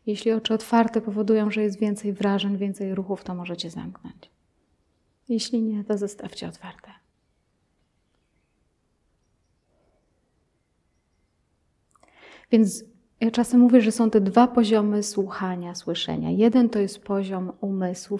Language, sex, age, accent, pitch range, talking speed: Polish, female, 30-49, native, 195-230 Hz, 110 wpm